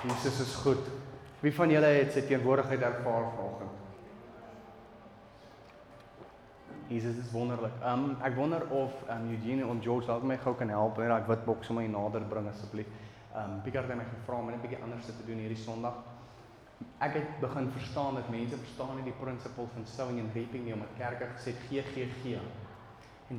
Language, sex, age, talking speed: English, male, 30-49, 175 wpm